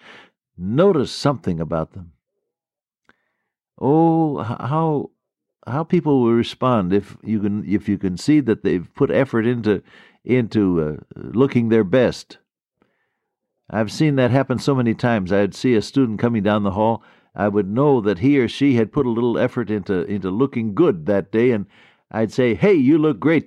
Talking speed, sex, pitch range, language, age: 170 wpm, male, 100-135 Hz, English, 60-79